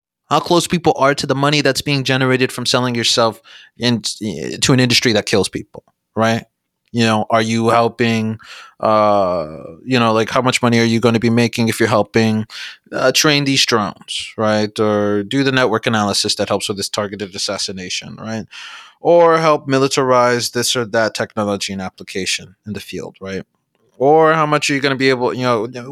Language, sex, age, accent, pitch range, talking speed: English, male, 20-39, American, 110-150 Hz, 190 wpm